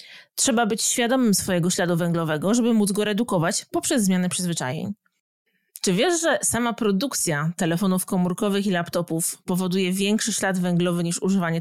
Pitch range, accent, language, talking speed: 170-215 Hz, native, Polish, 145 wpm